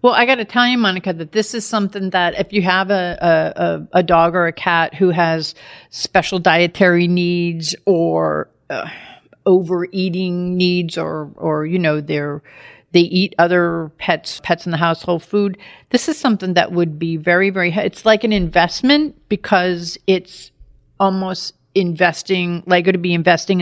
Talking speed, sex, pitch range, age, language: 170 wpm, female, 170-195 Hz, 50-69, English